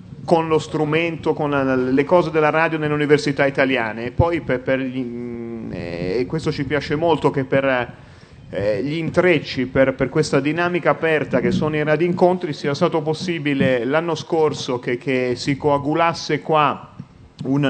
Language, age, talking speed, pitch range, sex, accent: Italian, 30-49, 155 wpm, 130-155 Hz, male, native